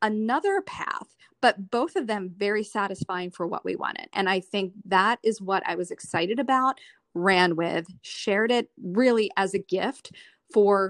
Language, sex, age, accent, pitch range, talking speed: English, female, 40-59, American, 185-215 Hz, 170 wpm